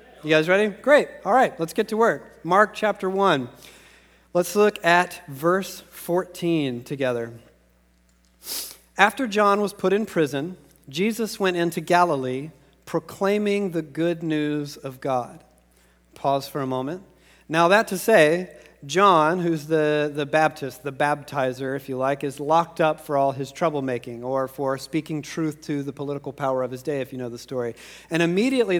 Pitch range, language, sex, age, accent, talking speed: 140-175 Hz, English, male, 40-59, American, 165 wpm